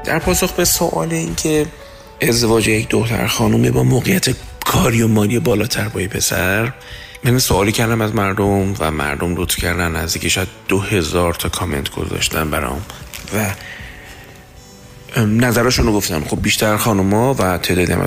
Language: Persian